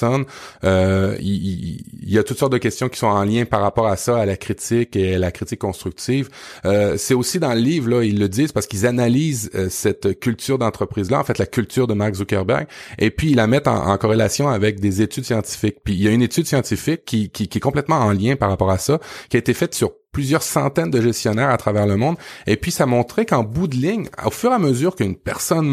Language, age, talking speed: French, 30-49, 250 wpm